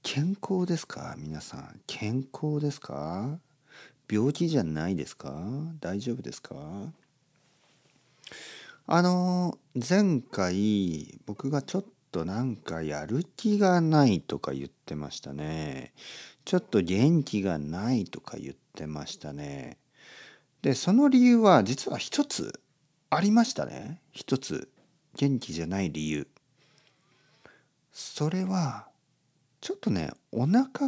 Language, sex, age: Japanese, male, 50-69